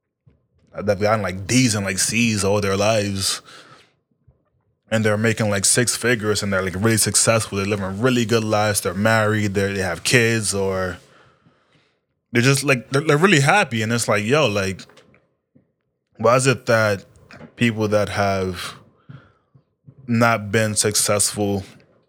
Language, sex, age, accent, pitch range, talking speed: English, male, 20-39, American, 100-115 Hz, 150 wpm